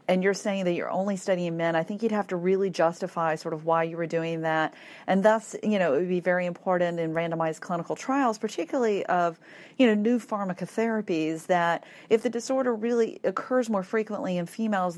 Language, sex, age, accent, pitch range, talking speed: English, female, 40-59, American, 165-205 Hz, 205 wpm